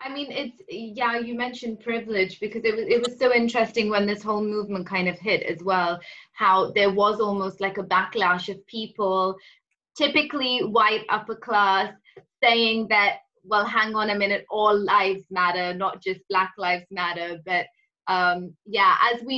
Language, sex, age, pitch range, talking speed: English, female, 20-39, 190-225 Hz, 175 wpm